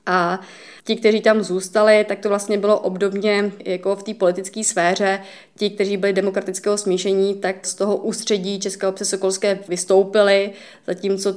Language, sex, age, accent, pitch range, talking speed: Czech, female, 20-39, native, 185-195 Hz, 155 wpm